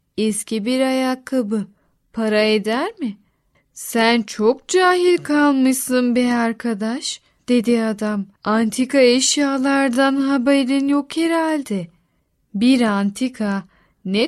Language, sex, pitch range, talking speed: Turkish, female, 215-280 Hz, 95 wpm